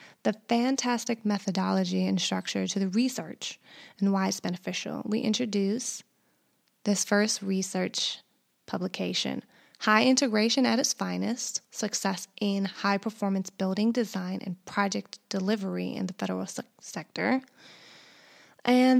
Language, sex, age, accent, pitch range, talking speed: English, female, 20-39, American, 195-245 Hz, 115 wpm